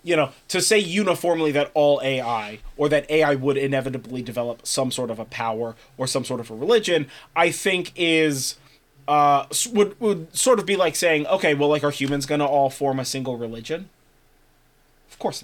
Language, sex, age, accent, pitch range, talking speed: English, male, 30-49, American, 130-155 Hz, 195 wpm